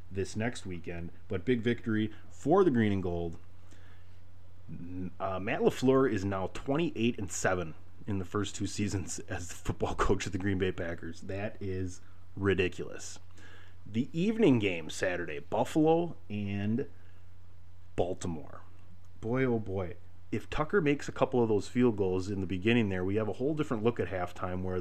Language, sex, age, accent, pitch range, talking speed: English, male, 30-49, American, 90-110 Hz, 165 wpm